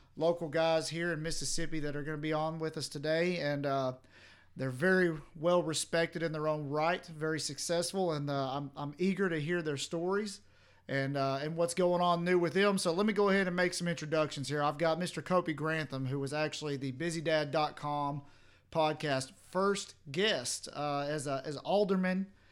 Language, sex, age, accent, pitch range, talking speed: English, male, 40-59, American, 145-175 Hz, 190 wpm